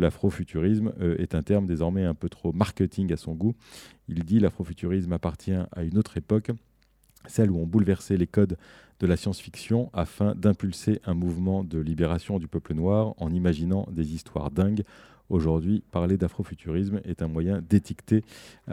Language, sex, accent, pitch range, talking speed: French, male, French, 85-100 Hz, 160 wpm